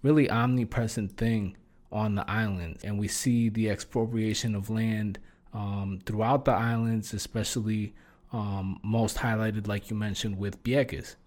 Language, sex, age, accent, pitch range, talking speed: English, male, 20-39, American, 110-135 Hz, 140 wpm